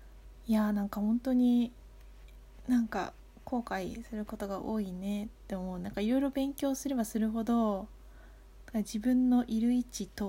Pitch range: 200-245 Hz